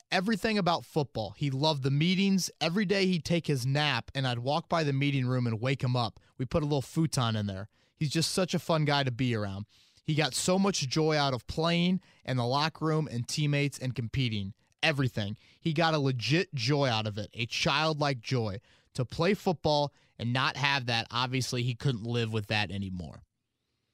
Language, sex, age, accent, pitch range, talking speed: English, male, 20-39, American, 110-145 Hz, 205 wpm